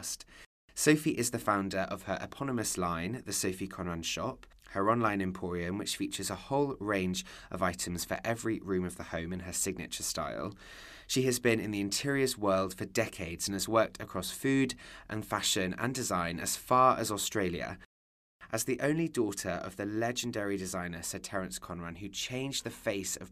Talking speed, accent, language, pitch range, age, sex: 180 wpm, British, English, 90-110 Hz, 20-39, male